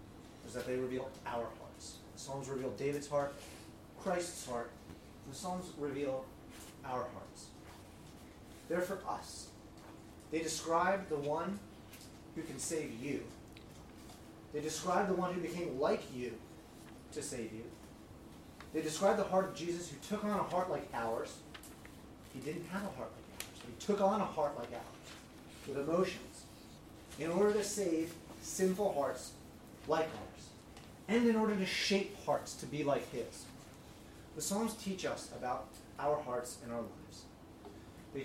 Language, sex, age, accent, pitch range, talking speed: English, male, 30-49, American, 120-175 Hz, 155 wpm